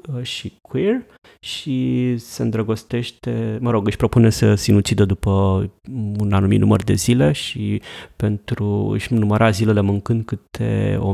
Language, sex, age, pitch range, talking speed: Romanian, male, 30-49, 105-120 Hz, 135 wpm